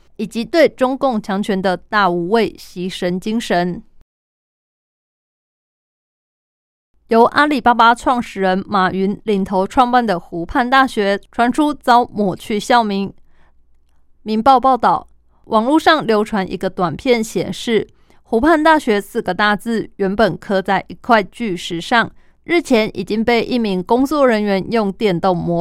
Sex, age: female, 20-39